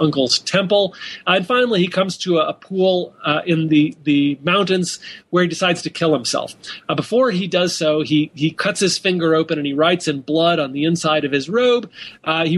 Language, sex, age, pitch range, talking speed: English, male, 40-59, 155-195 Hz, 220 wpm